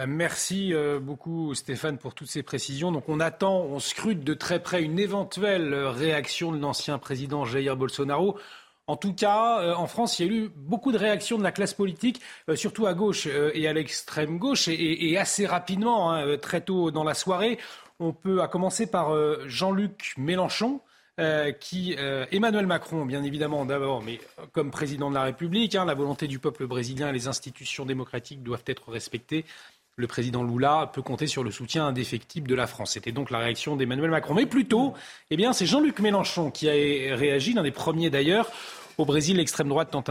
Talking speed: 180 wpm